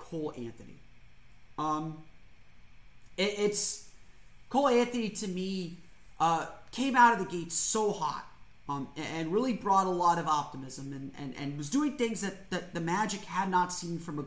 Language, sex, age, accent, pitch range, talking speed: English, male, 30-49, American, 145-195 Hz, 175 wpm